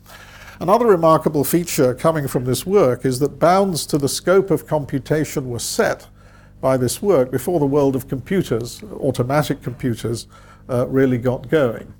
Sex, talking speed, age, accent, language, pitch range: male, 155 wpm, 50-69, British, English, 120-145 Hz